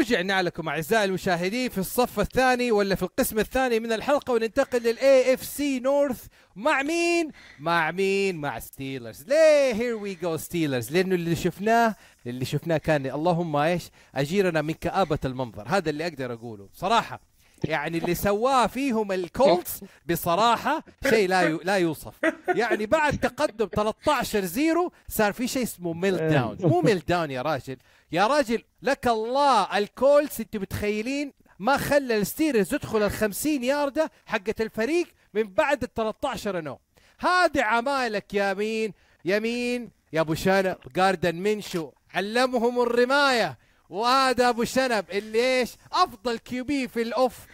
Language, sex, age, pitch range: Arabic, male, 40-59, 165-255 Hz